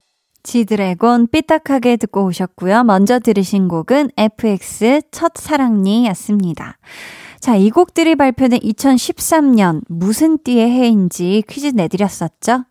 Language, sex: Korean, female